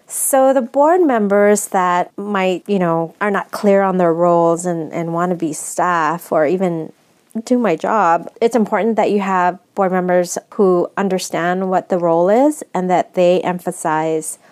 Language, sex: English, female